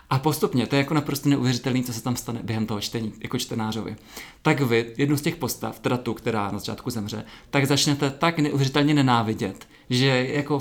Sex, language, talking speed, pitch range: male, Czech, 200 wpm, 120-145 Hz